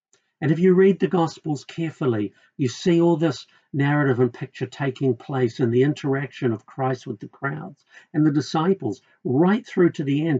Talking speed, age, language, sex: 185 wpm, 50-69, English, male